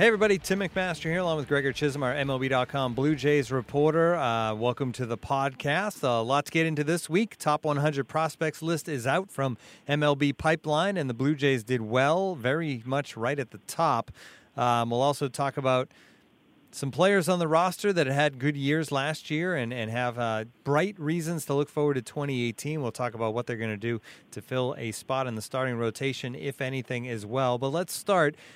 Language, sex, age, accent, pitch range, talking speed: English, male, 30-49, American, 130-160 Hz, 205 wpm